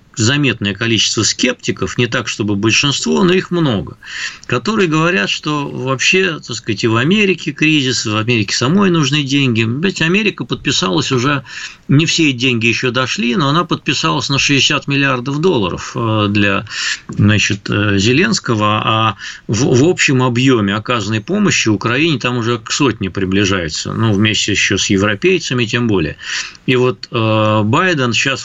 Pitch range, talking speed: 105-135 Hz, 145 wpm